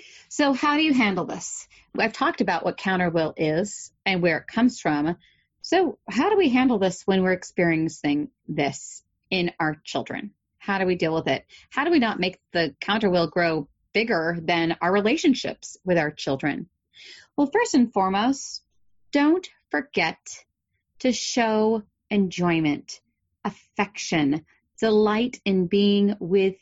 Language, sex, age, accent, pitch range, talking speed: English, female, 30-49, American, 170-225 Hz, 150 wpm